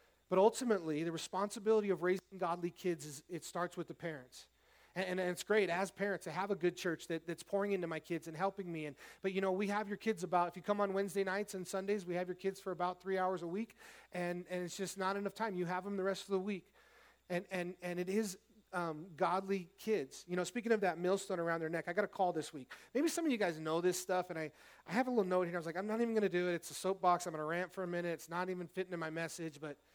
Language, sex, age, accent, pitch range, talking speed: English, male, 30-49, American, 170-195 Hz, 285 wpm